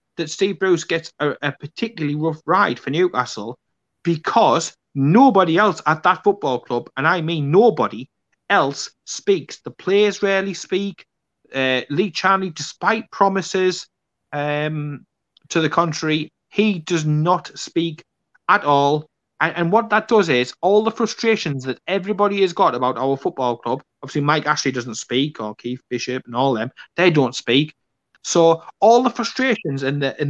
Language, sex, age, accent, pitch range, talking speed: English, male, 30-49, British, 135-185 Hz, 160 wpm